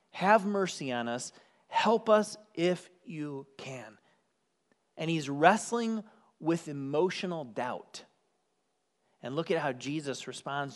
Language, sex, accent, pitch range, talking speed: English, male, American, 140-200 Hz, 115 wpm